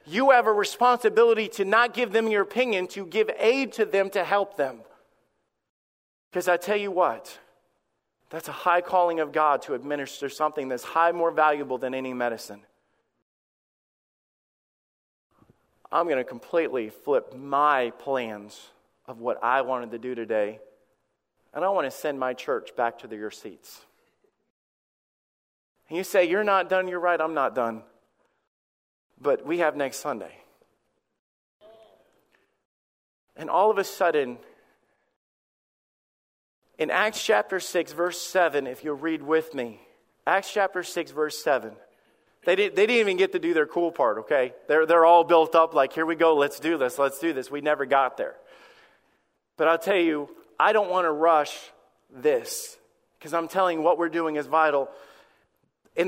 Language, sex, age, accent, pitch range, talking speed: English, male, 40-59, American, 145-210 Hz, 165 wpm